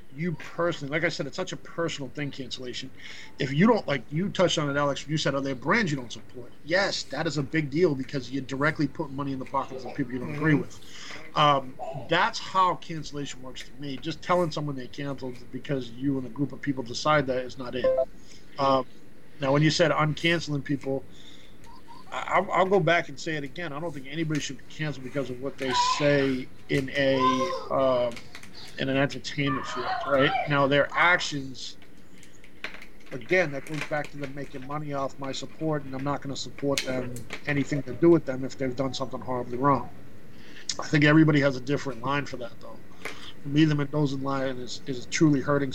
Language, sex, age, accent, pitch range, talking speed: English, male, 40-59, American, 130-155 Hz, 210 wpm